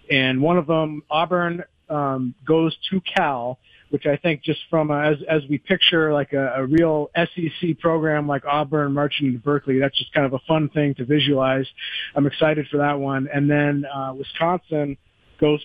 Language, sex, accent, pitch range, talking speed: English, male, American, 135-160 Hz, 190 wpm